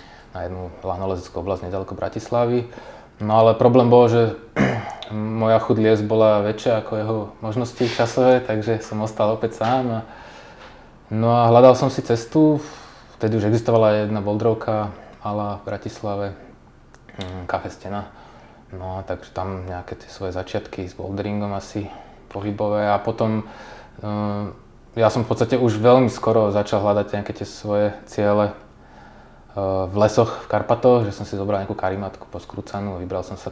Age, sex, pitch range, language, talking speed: 20-39, male, 95-115 Hz, Czech, 145 wpm